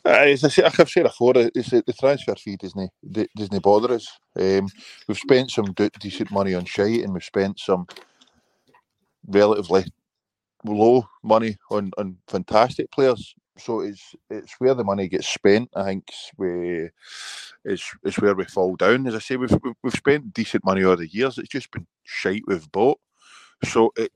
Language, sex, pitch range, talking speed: English, male, 90-115 Hz, 170 wpm